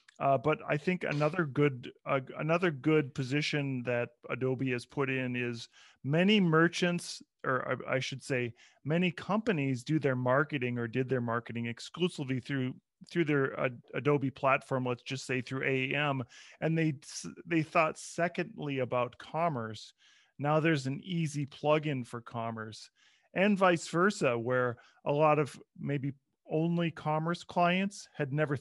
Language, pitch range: English, 130-165 Hz